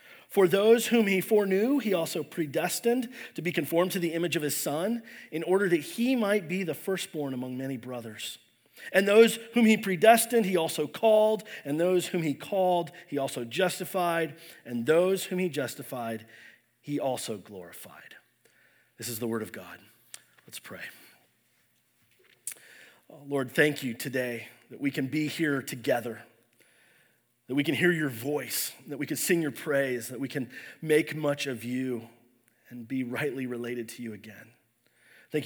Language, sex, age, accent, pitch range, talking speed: English, male, 40-59, American, 130-180 Hz, 165 wpm